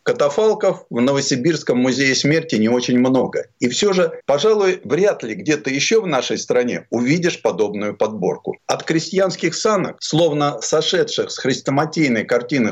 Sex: male